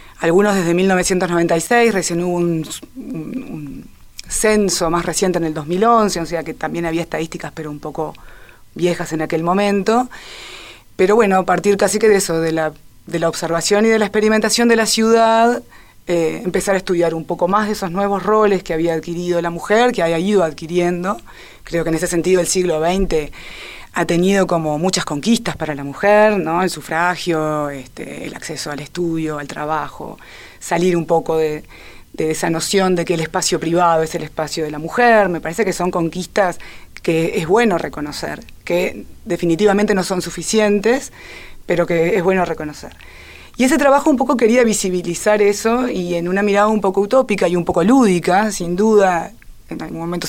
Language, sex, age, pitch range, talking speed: Spanish, female, 20-39, 165-205 Hz, 180 wpm